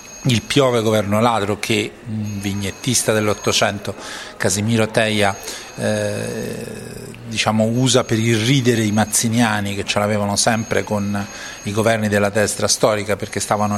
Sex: male